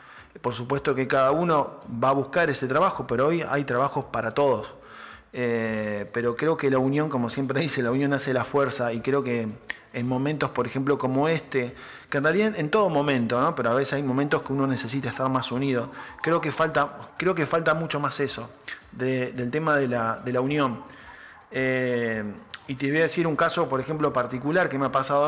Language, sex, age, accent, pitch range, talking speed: Spanish, male, 20-39, Argentinian, 125-150 Hz, 195 wpm